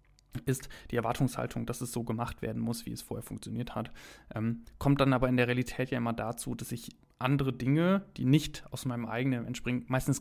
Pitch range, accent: 115-130 Hz, German